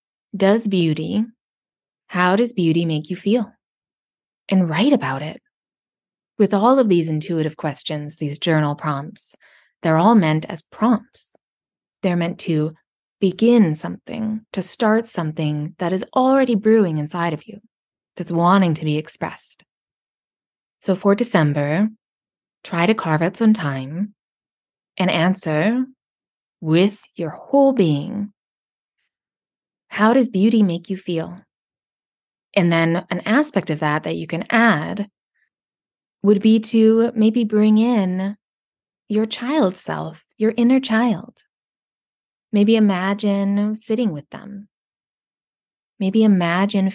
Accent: American